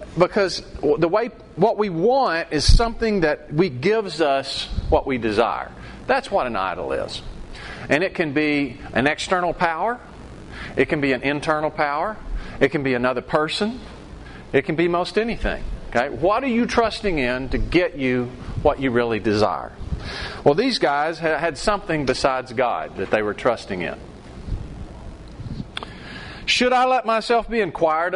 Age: 40-59